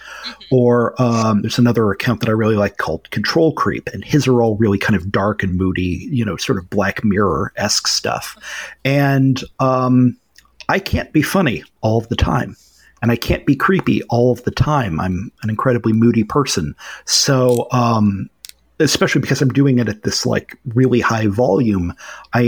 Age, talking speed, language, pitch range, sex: 40-59, 180 wpm, English, 105-125 Hz, male